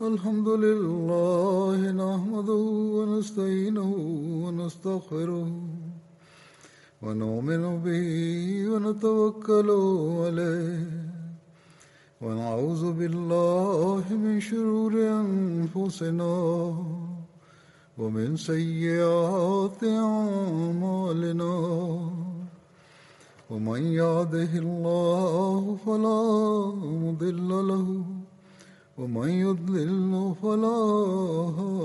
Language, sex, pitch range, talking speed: Indonesian, male, 170-210 Hz, 45 wpm